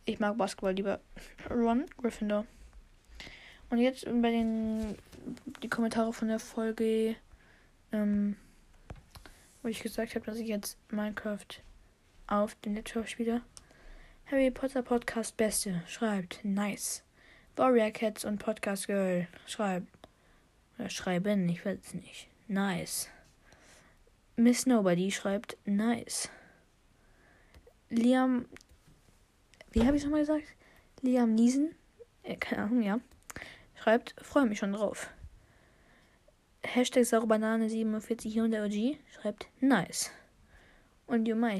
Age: 10-29